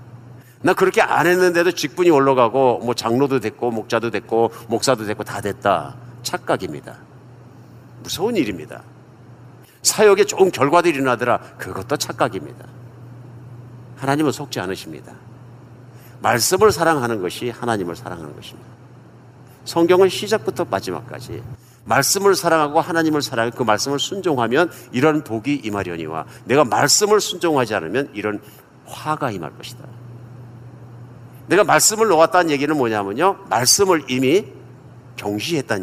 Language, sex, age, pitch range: Korean, male, 50-69, 120-170 Hz